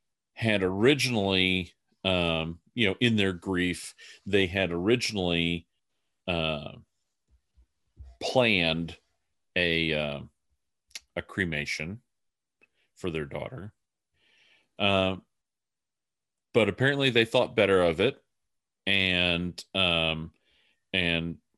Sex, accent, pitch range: male, American, 80-100 Hz